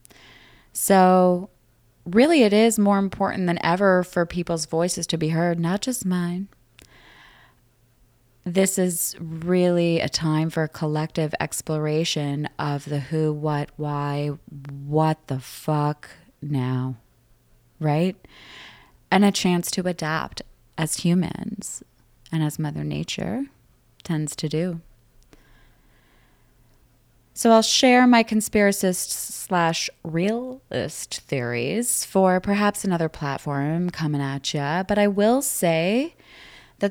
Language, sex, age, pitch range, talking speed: English, female, 20-39, 145-190 Hz, 110 wpm